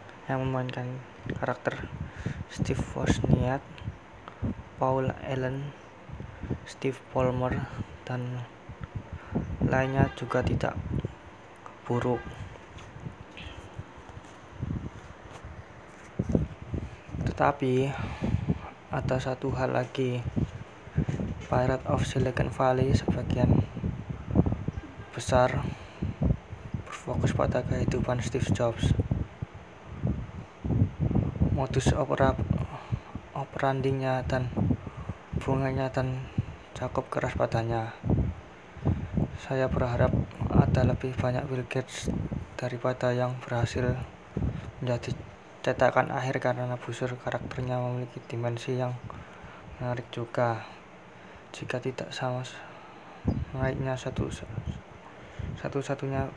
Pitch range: 115-130 Hz